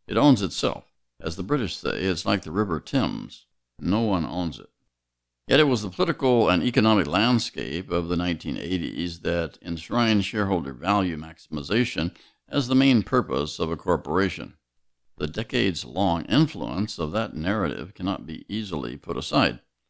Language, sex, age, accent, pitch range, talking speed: English, male, 60-79, American, 80-110 Hz, 150 wpm